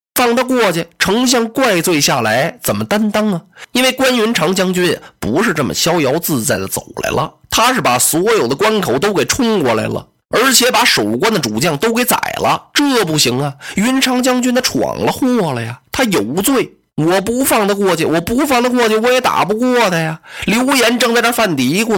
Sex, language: male, Chinese